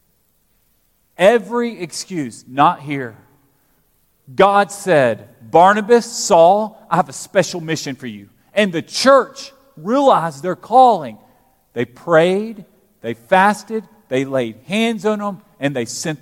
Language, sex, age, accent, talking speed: English, male, 40-59, American, 120 wpm